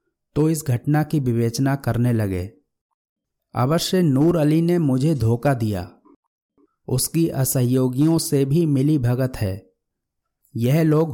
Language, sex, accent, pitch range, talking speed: Hindi, male, native, 115-150 Hz, 125 wpm